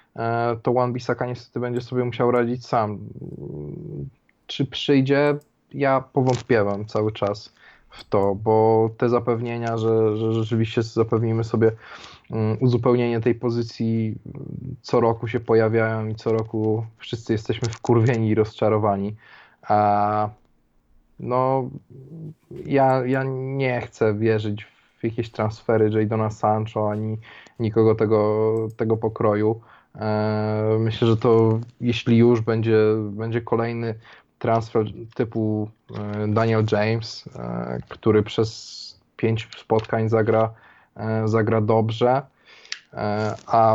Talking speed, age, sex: 105 wpm, 20-39, male